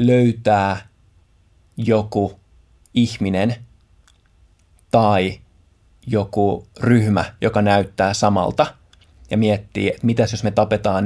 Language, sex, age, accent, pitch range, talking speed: Finnish, male, 20-39, native, 90-110 Hz, 85 wpm